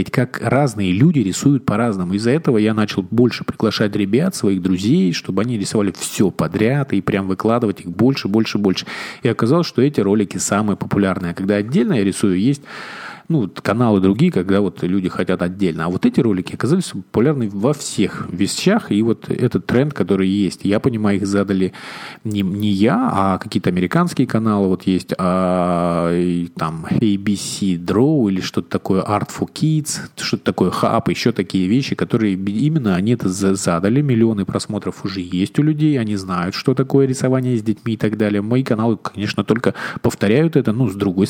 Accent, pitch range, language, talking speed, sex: native, 95-120 Hz, Russian, 180 wpm, male